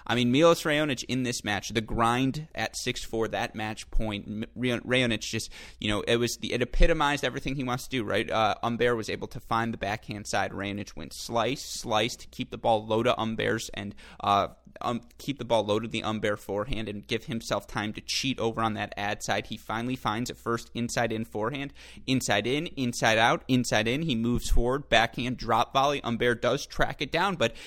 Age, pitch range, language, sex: 30-49, 110-135 Hz, English, male